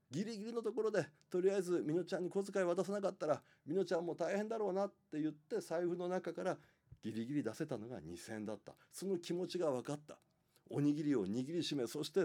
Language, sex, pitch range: Japanese, male, 125-180 Hz